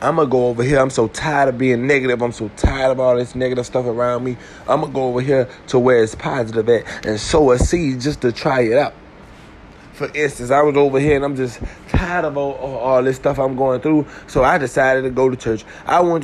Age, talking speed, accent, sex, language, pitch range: 20-39, 260 wpm, American, male, English, 130-170 Hz